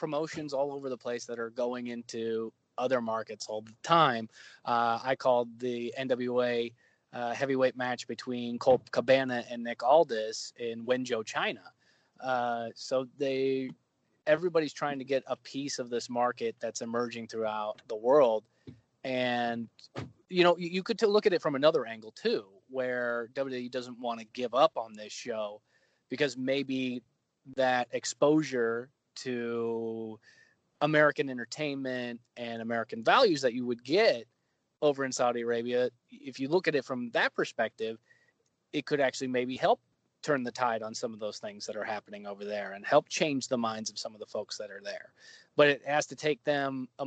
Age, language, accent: 20-39, English, American